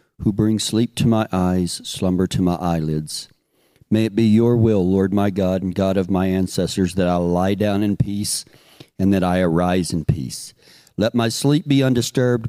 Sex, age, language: male, 50-69, English